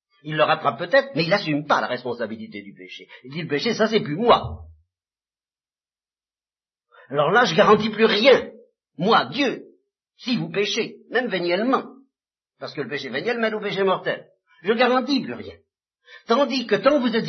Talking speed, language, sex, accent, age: 180 wpm, French, male, French, 50-69